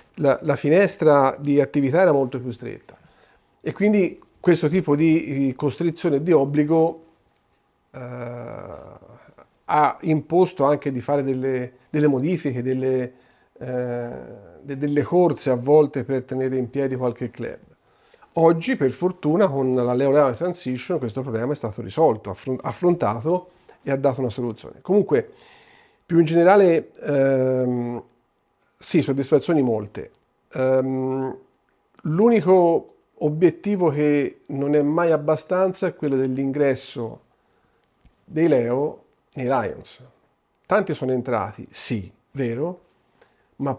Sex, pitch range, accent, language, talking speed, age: male, 130-160 Hz, native, Italian, 120 wpm, 40-59